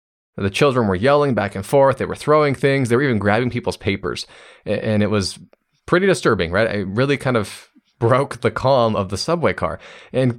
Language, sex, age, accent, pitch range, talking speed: English, male, 20-39, American, 95-130 Hz, 200 wpm